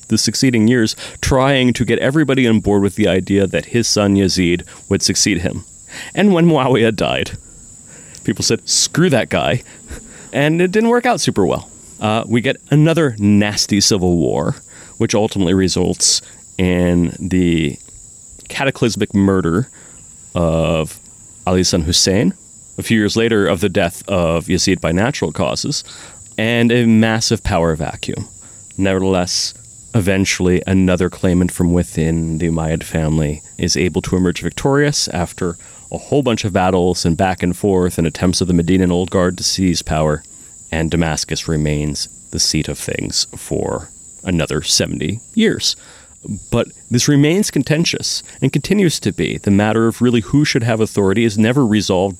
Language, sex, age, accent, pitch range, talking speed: English, male, 30-49, American, 85-115 Hz, 155 wpm